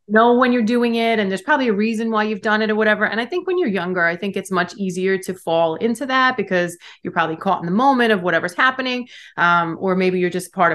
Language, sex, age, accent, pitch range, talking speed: English, female, 30-49, American, 175-230 Hz, 265 wpm